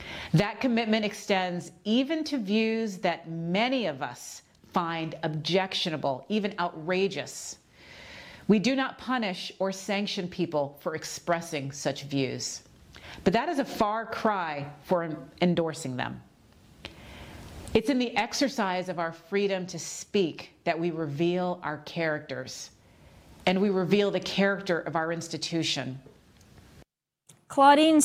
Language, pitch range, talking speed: English, 185-265 Hz, 120 wpm